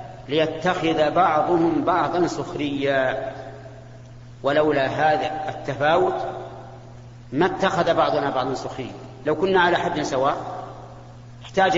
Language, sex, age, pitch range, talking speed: Arabic, male, 40-59, 130-165 Hz, 90 wpm